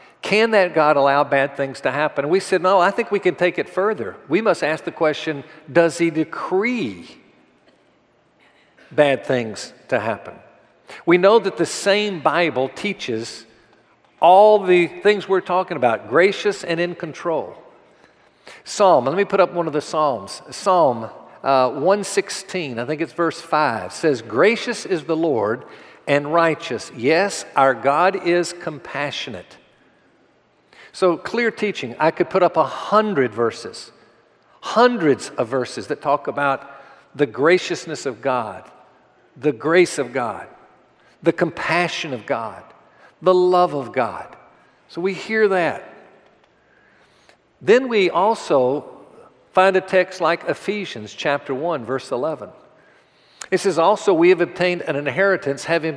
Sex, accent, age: male, American, 50-69